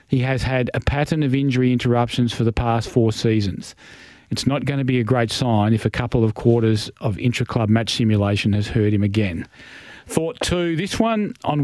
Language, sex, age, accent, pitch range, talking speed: English, male, 40-59, Australian, 115-135 Hz, 205 wpm